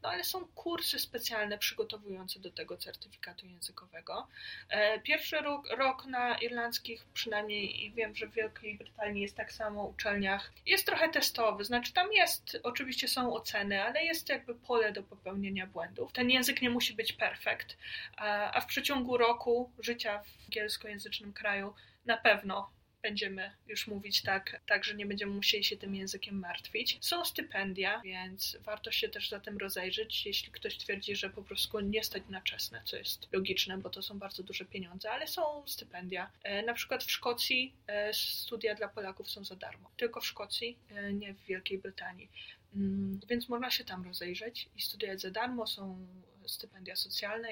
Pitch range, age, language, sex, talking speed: 200-245 Hz, 20-39, Polish, female, 170 wpm